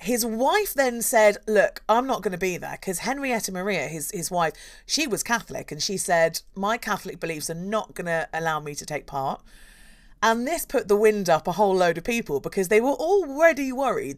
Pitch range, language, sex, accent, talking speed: 175-220 Hz, English, female, British, 215 wpm